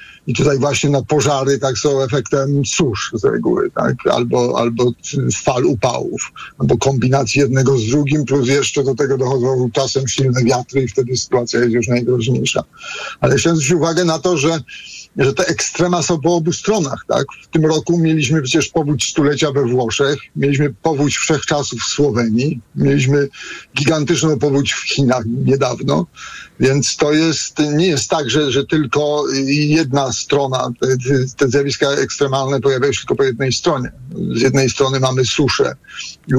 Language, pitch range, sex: Polish, 130-155 Hz, male